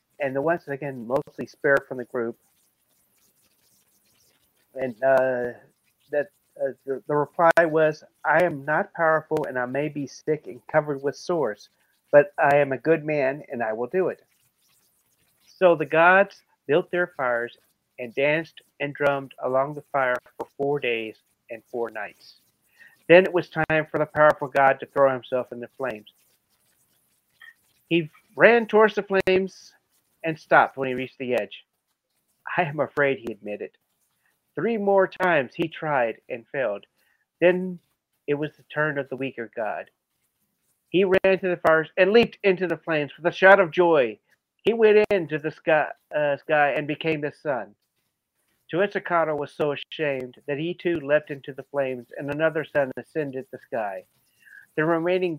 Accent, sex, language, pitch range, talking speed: American, male, English, 135-170 Hz, 165 wpm